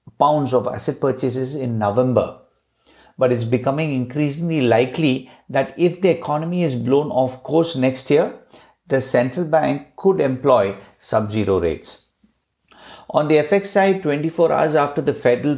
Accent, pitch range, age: Indian, 120-150 Hz, 50-69